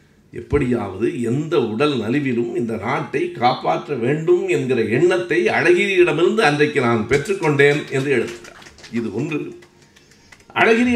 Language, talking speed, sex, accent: Tamil, 105 wpm, male, native